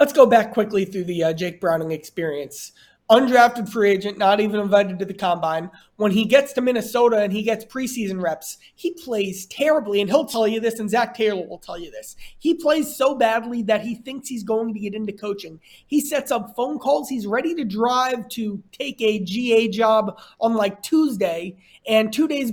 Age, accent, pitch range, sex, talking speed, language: 30-49, American, 200-240 Hz, male, 205 wpm, English